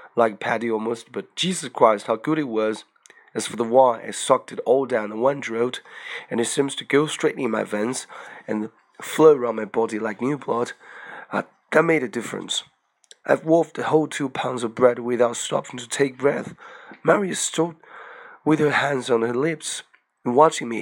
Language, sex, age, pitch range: Chinese, male, 30-49, 115-140 Hz